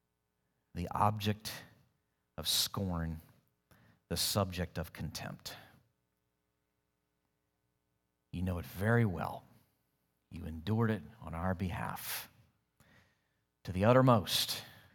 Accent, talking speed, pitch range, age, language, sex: American, 90 wpm, 80-115 Hz, 40-59, English, male